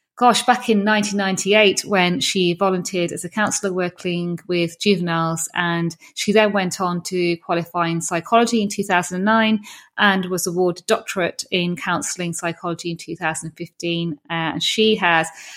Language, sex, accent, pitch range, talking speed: English, female, British, 180-205 Hz, 145 wpm